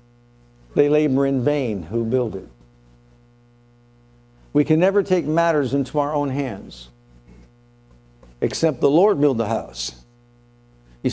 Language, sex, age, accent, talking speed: English, male, 60-79, American, 125 wpm